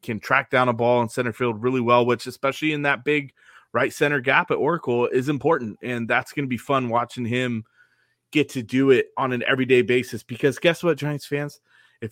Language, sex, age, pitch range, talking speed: English, male, 20-39, 120-155 Hz, 220 wpm